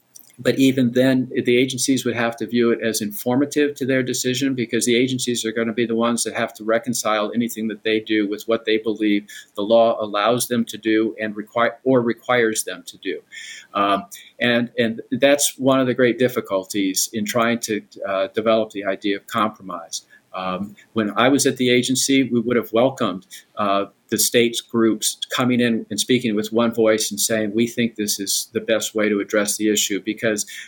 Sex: male